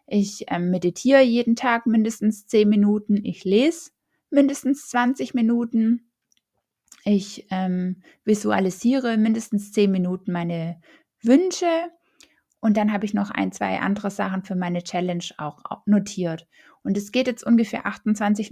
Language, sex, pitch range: German, female, 200-245 Hz